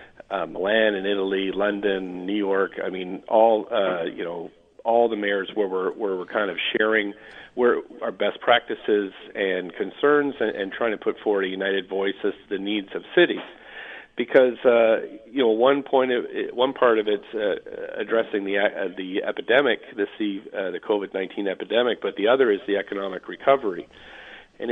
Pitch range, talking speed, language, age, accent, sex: 100-130 Hz, 180 wpm, English, 50-69, American, male